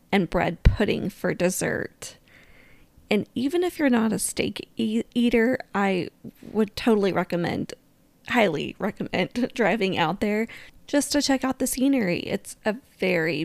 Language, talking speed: English, 140 wpm